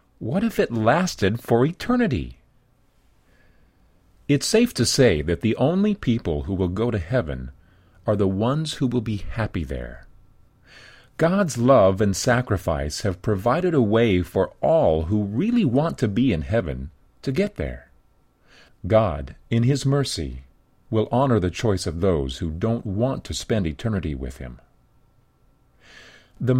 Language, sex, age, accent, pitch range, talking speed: English, male, 40-59, American, 85-130 Hz, 150 wpm